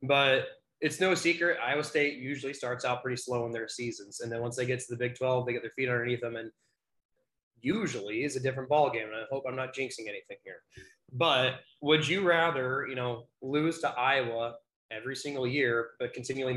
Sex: male